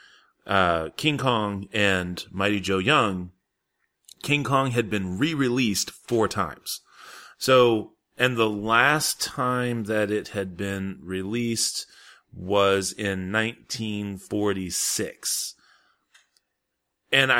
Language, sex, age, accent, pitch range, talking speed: English, male, 30-49, American, 95-130 Hz, 95 wpm